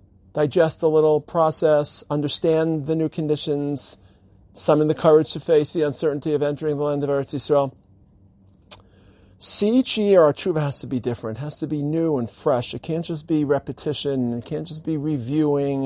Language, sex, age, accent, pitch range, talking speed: English, male, 50-69, American, 120-155 Hz, 185 wpm